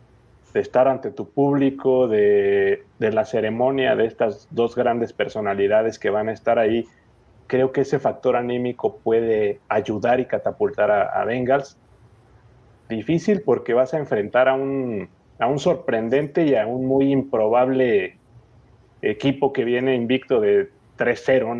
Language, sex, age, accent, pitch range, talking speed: Spanish, male, 30-49, Mexican, 115-135 Hz, 145 wpm